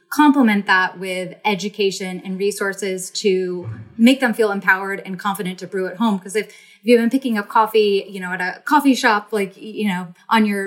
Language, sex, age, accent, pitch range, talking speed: English, female, 20-39, American, 185-215 Hz, 200 wpm